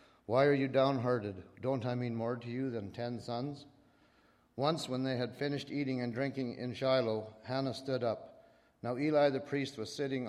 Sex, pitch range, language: male, 110-135 Hz, English